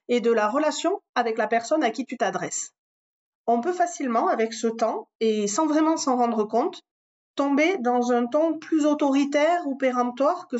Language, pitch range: French, 210-270 Hz